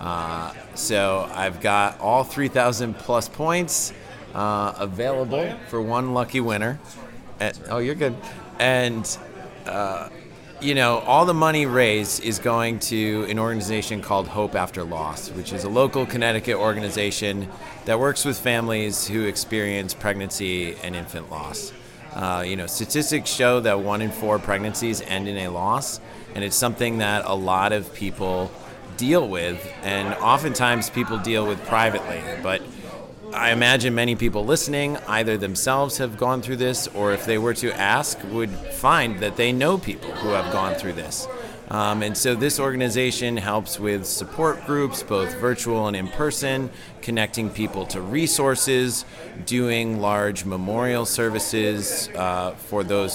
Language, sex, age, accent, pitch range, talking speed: English, male, 30-49, American, 100-125 Hz, 150 wpm